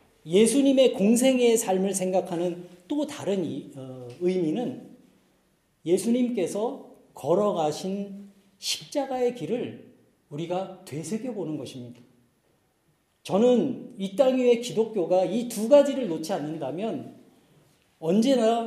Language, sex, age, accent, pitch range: Korean, male, 40-59, native, 150-205 Hz